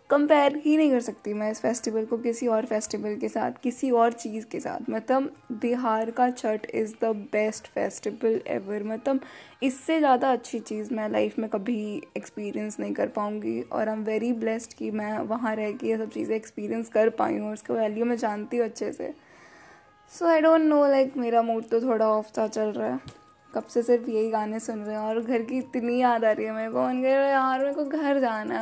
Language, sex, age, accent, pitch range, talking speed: Hindi, female, 10-29, native, 215-245 Hz, 215 wpm